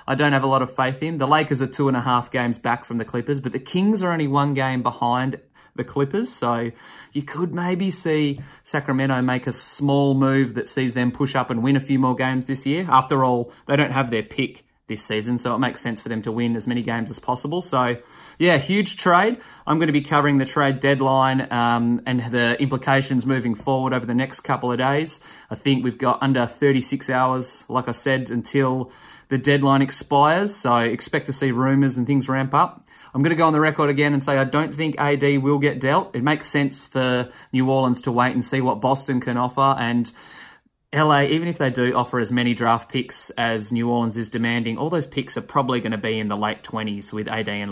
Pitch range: 120-145 Hz